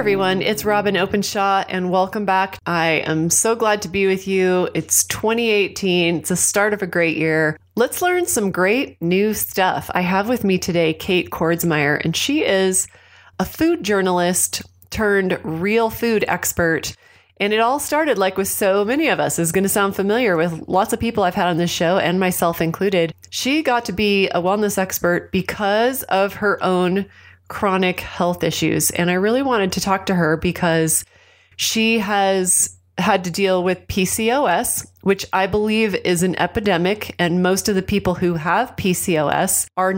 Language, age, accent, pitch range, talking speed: English, 30-49, American, 175-200 Hz, 180 wpm